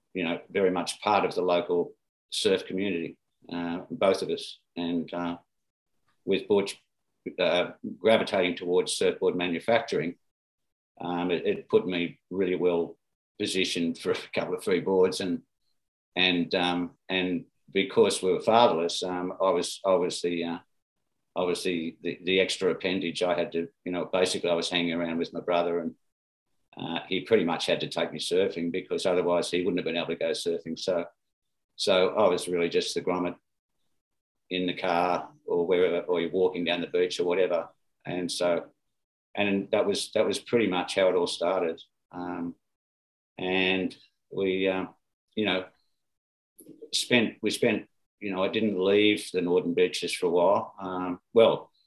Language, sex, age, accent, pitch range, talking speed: English, male, 50-69, Australian, 85-110 Hz, 170 wpm